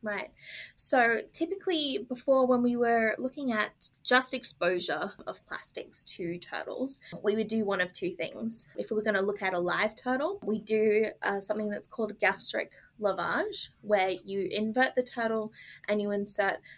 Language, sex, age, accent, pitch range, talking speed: English, female, 20-39, Australian, 195-240 Hz, 170 wpm